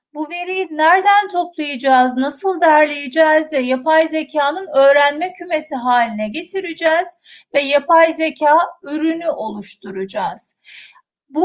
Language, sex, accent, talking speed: Turkish, female, native, 100 wpm